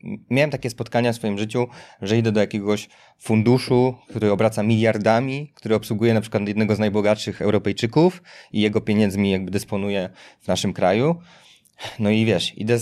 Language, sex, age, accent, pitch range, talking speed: Polish, male, 20-39, native, 105-120 Hz, 160 wpm